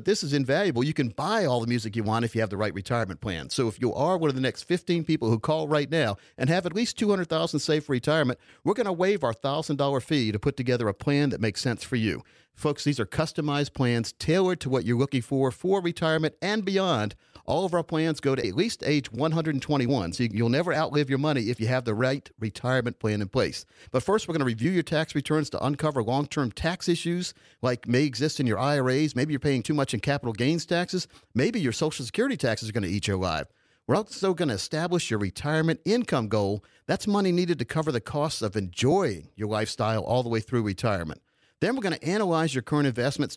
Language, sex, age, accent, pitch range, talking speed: English, male, 50-69, American, 120-165 Hz, 235 wpm